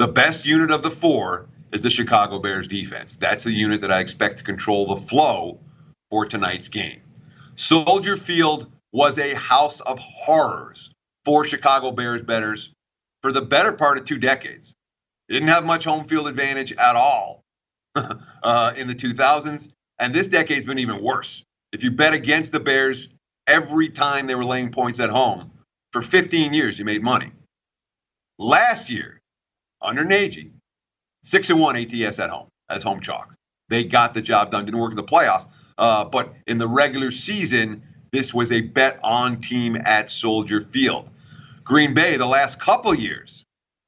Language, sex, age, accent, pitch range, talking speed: English, male, 50-69, American, 115-150 Hz, 170 wpm